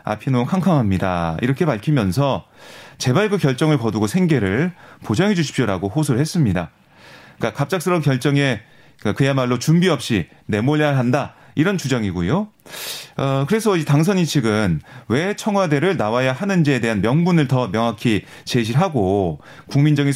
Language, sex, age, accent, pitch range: Korean, male, 30-49, native, 125-175 Hz